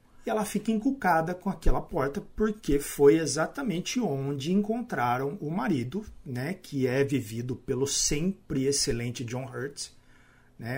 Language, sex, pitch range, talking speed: Portuguese, male, 120-190 Hz, 135 wpm